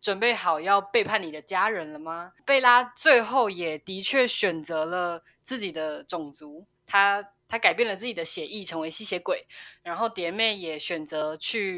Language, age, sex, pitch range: Chinese, 10-29, female, 170-240 Hz